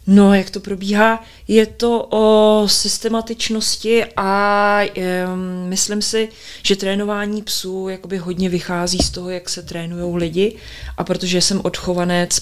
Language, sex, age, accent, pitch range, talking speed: Czech, female, 30-49, native, 170-185 Hz, 130 wpm